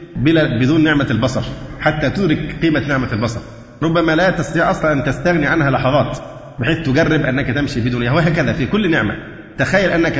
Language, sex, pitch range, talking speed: Arabic, male, 125-155 Hz, 160 wpm